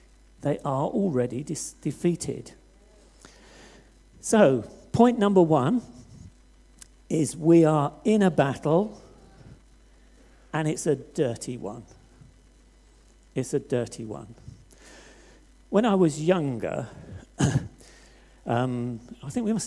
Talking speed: 100 wpm